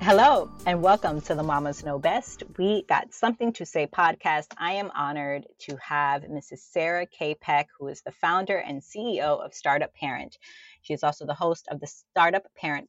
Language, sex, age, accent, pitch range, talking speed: English, female, 30-49, American, 145-190 Hz, 190 wpm